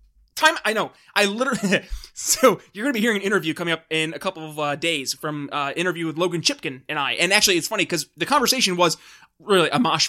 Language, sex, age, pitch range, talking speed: English, male, 20-39, 175-235 Hz, 240 wpm